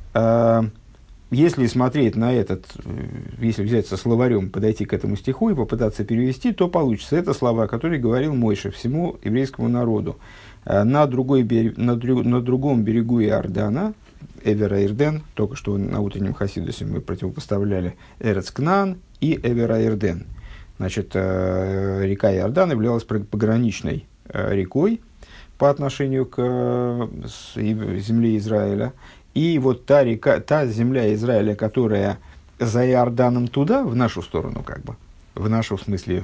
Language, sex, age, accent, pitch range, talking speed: Russian, male, 50-69, native, 100-125 Hz, 125 wpm